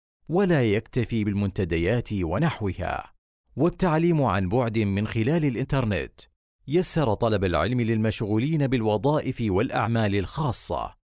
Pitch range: 95-140 Hz